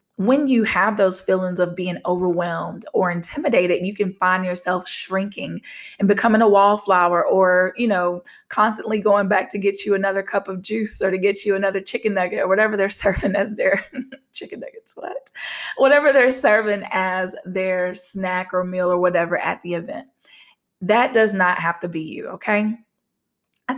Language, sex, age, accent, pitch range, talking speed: English, female, 20-39, American, 180-215 Hz, 175 wpm